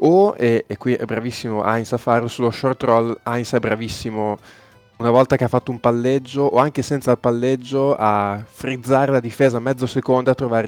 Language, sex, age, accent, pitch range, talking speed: Italian, male, 20-39, native, 110-130 Hz, 200 wpm